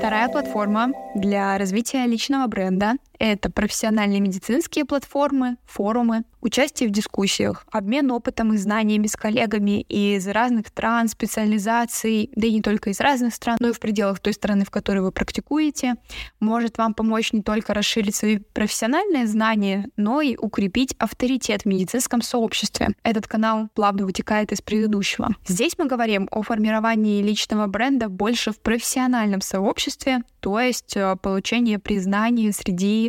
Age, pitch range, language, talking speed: 20-39, 210-235 Hz, Russian, 145 wpm